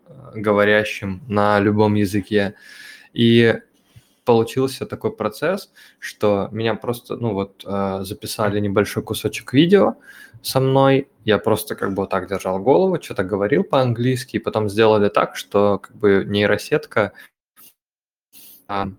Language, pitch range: Russian, 105-120 Hz